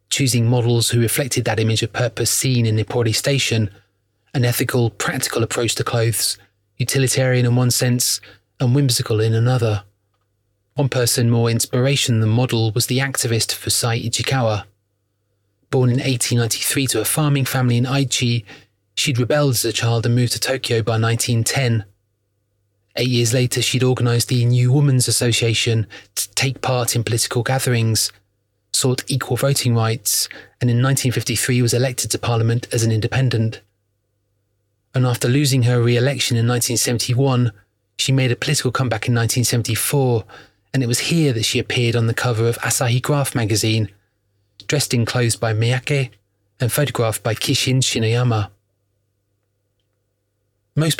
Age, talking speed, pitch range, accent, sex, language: 30-49, 150 wpm, 110-125 Hz, British, male, English